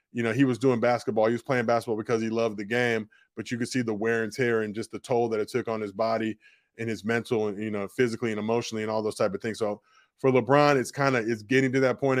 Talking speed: 290 wpm